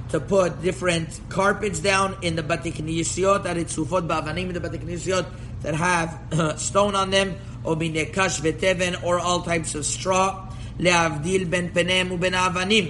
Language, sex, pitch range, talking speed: English, male, 150-185 Hz, 85 wpm